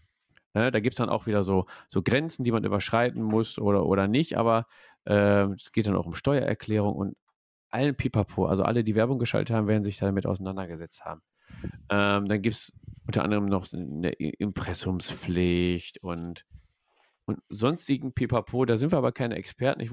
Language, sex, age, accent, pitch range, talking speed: German, male, 40-59, German, 95-120 Hz, 175 wpm